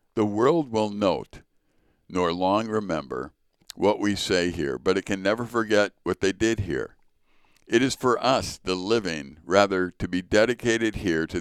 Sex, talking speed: male, 170 wpm